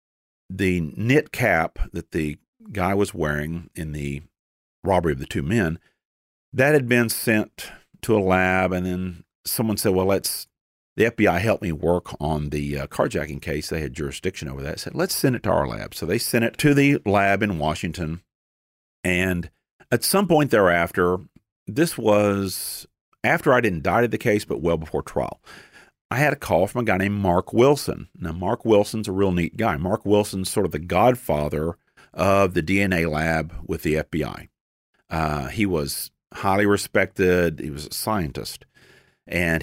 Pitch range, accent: 80-105 Hz, American